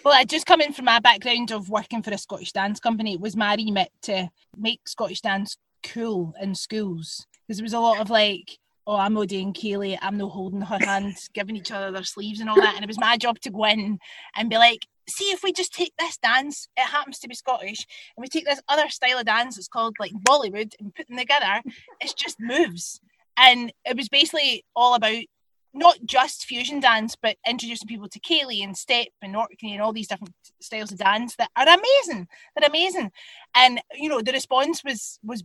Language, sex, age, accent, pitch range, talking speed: English, female, 20-39, British, 210-260 Hz, 220 wpm